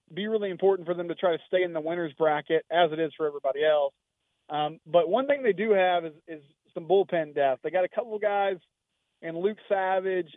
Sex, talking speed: male, 230 wpm